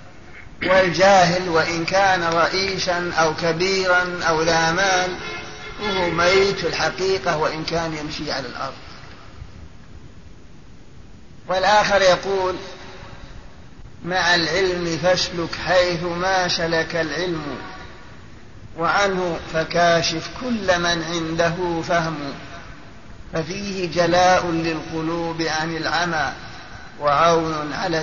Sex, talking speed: male, 85 wpm